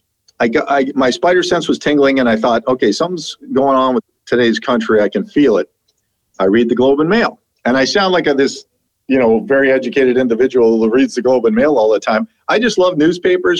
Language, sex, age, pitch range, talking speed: English, male, 50-69, 115-155 Hz, 230 wpm